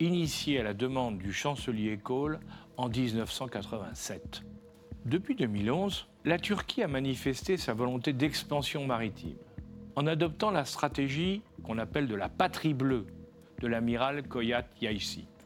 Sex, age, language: male, 50-69, French